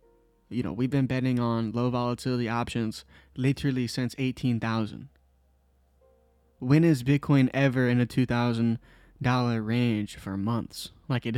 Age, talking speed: 20-39, 125 wpm